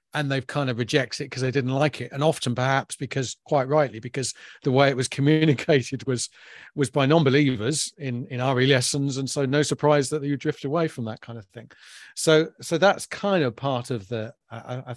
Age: 40-59